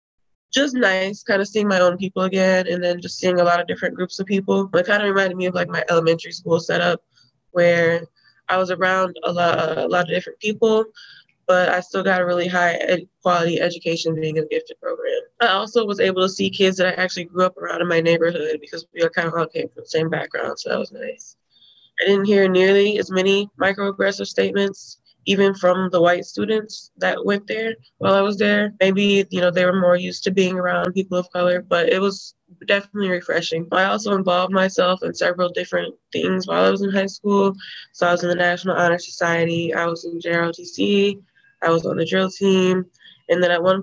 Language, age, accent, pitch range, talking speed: English, 20-39, American, 175-195 Hz, 225 wpm